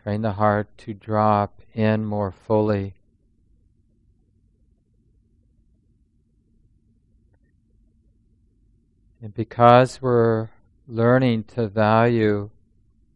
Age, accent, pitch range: 50-69, American, 100-115 Hz